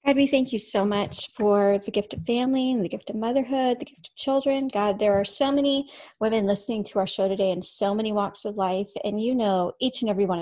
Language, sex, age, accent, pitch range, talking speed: English, female, 40-59, American, 195-240 Hz, 255 wpm